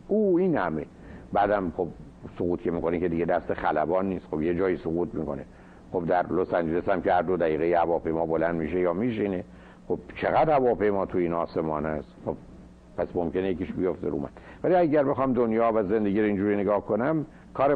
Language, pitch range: Persian, 85-120 Hz